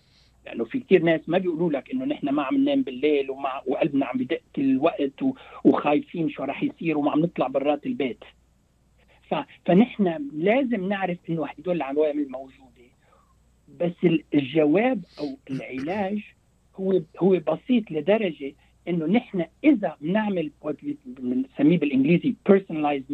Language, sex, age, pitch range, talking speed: Arabic, male, 60-79, 150-215 Hz, 130 wpm